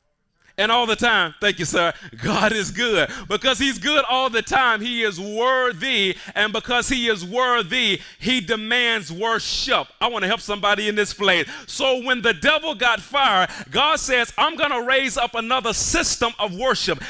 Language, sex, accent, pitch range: English, male, American, 205-255 Hz